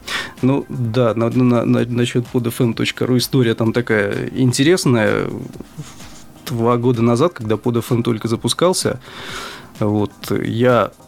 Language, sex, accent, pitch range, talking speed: Russian, male, native, 115-130 Hz, 110 wpm